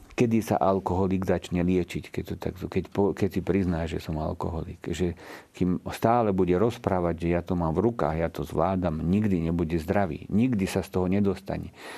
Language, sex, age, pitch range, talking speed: Slovak, male, 50-69, 85-105 Hz, 165 wpm